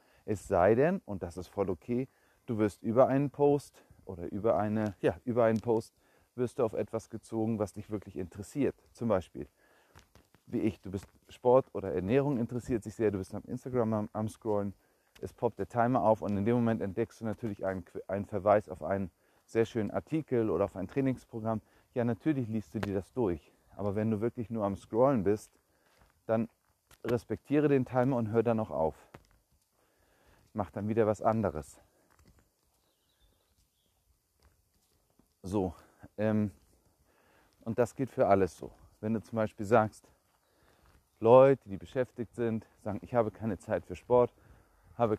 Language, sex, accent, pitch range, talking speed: German, male, German, 100-120 Hz, 165 wpm